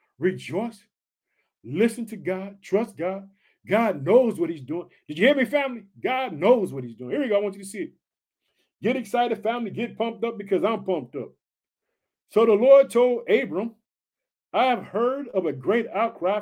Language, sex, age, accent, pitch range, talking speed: English, male, 50-69, American, 195-240 Hz, 190 wpm